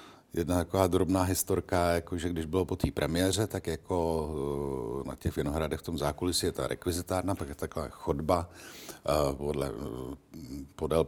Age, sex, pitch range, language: 60-79, male, 80-100 Hz, Czech